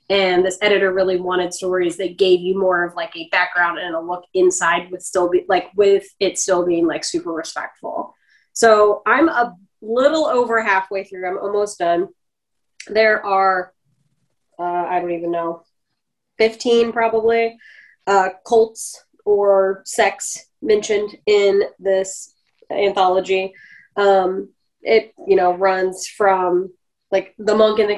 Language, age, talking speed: English, 20-39, 145 wpm